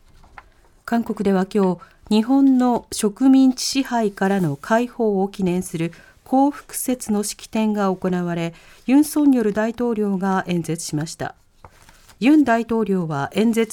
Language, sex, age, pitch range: Japanese, female, 40-59, 185-260 Hz